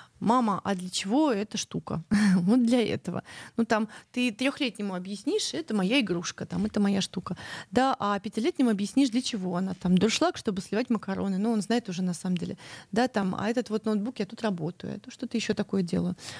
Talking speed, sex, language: 205 wpm, female, Russian